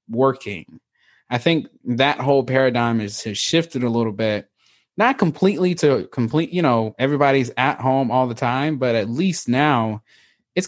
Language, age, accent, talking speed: English, 20-39, American, 165 wpm